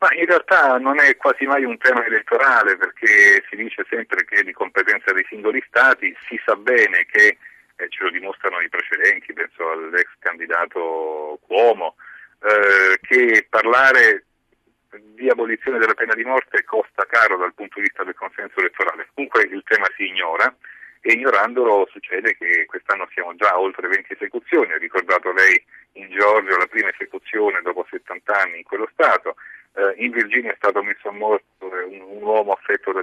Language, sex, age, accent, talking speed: Italian, male, 40-59, native, 170 wpm